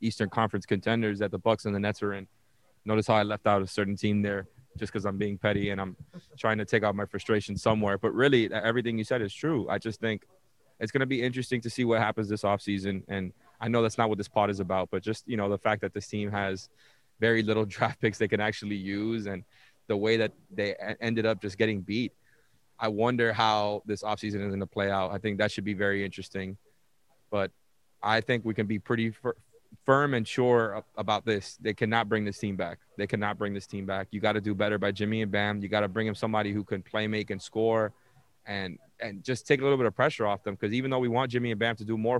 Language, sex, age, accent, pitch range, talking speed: English, male, 20-39, American, 100-115 Hz, 250 wpm